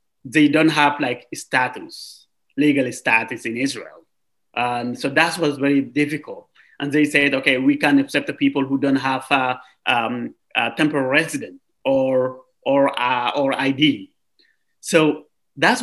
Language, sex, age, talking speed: English, male, 30-49, 150 wpm